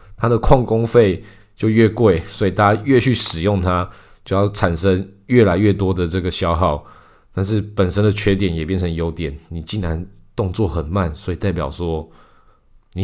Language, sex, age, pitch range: Chinese, male, 20-39, 90-110 Hz